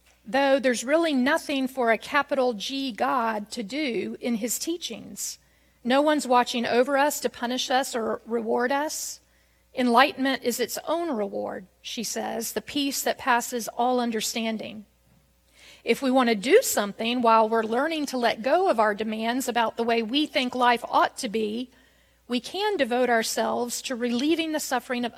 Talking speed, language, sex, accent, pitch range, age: 170 wpm, English, female, American, 215-265 Hz, 40-59